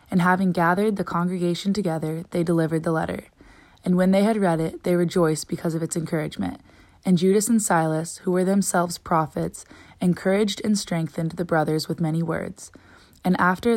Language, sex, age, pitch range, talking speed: English, female, 20-39, 160-190 Hz, 175 wpm